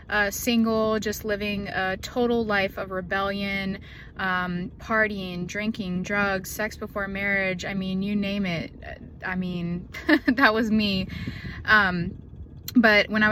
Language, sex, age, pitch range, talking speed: English, female, 20-39, 195-225 Hz, 135 wpm